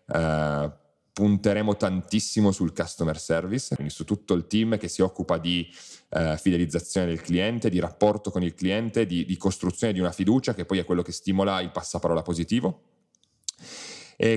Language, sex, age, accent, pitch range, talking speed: Italian, male, 30-49, native, 85-105 Hz, 160 wpm